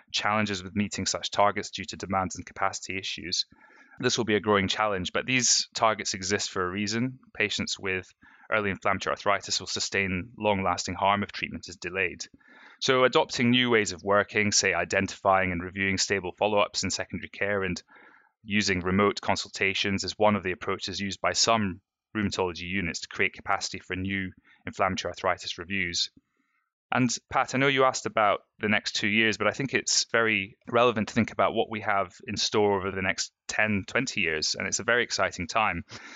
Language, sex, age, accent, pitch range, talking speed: English, male, 20-39, British, 95-105 Hz, 185 wpm